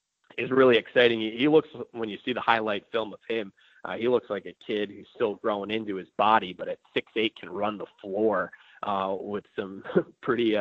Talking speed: 210 wpm